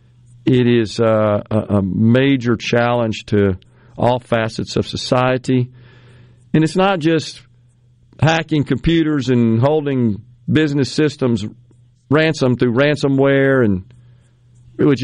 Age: 50-69